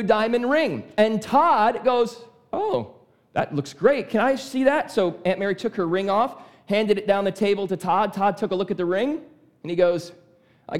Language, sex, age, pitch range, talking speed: English, male, 40-59, 185-245 Hz, 210 wpm